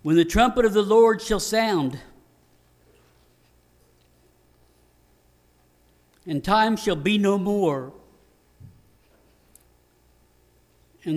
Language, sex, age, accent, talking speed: English, male, 60-79, American, 80 wpm